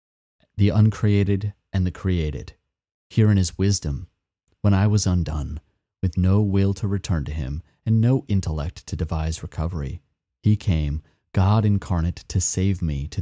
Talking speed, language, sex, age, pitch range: 155 wpm, English, male, 30-49, 80-105 Hz